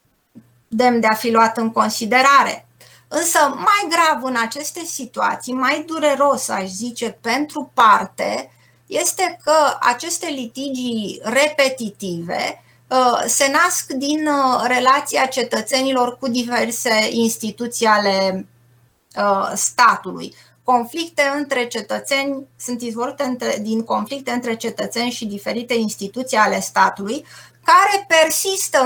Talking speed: 105 wpm